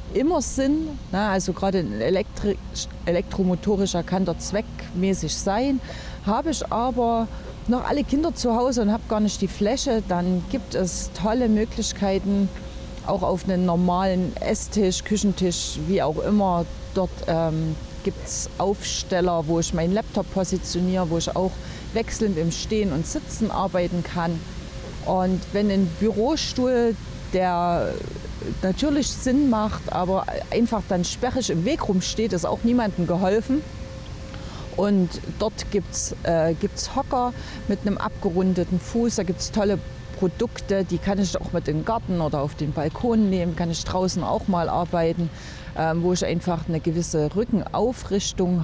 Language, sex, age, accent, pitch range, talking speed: German, female, 30-49, German, 175-215 Hz, 145 wpm